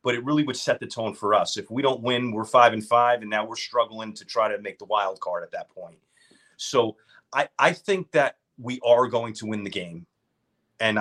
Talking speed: 240 wpm